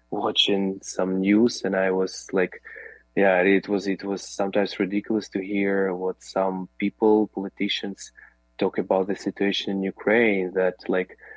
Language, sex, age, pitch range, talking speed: English, male, 20-39, 95-110 Hz, 150 wpm